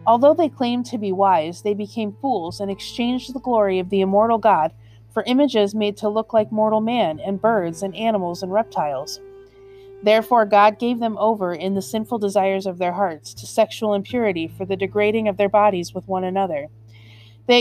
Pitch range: 180-230 Hz